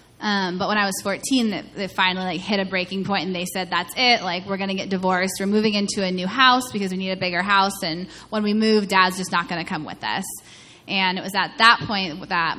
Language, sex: English, female